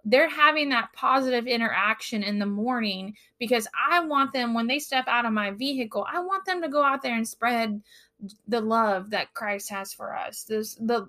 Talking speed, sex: 200 wpm, female